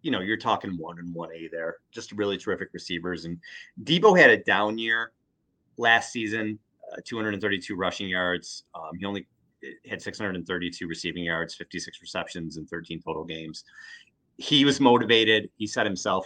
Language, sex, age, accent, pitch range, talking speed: English, male, 30-49, American, 85-105 Hz, 155 wpm